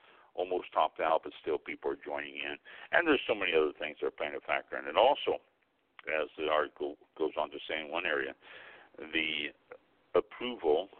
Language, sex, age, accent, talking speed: English, male, 60-79, American, 190 wpm